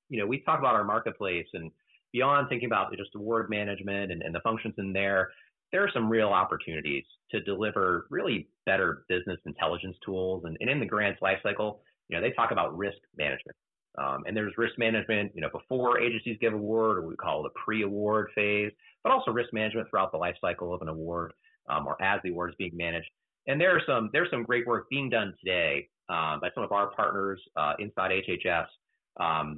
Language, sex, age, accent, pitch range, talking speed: English, male, 30-49, American, 90-115 Hz, 205 wpm